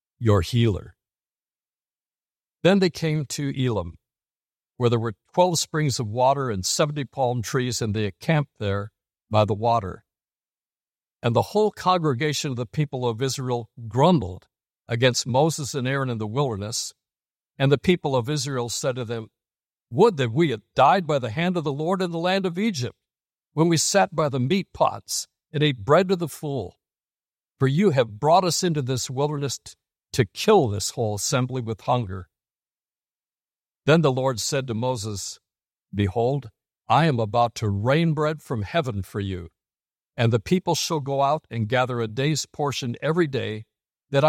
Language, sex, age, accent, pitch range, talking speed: English, male, 60-79, American, 115-150 Hz, 170 wpm